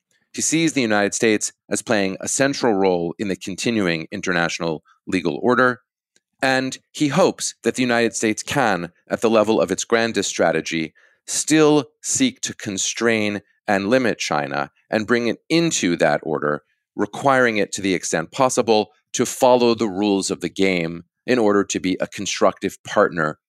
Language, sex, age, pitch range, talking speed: English, male, 30-49, 90-115 Hz, 165 wpm